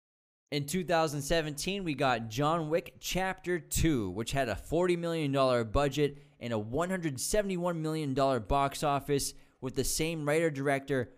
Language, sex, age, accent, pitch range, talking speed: English, male, 20-39, American, 125-155 Hz, 130 wpm